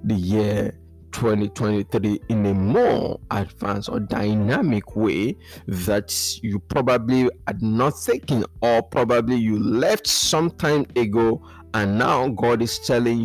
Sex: male